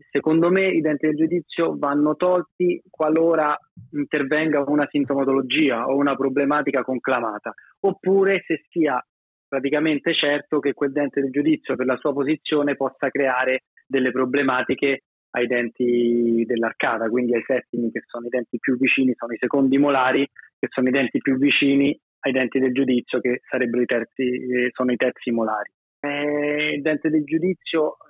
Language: Italian